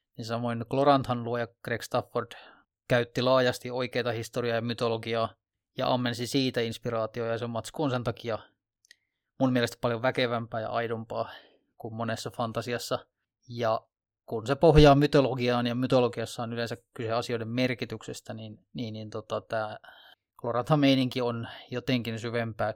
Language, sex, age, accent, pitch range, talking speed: Finnish, male, 20-39, native, 115-130 Hz, 130 wpm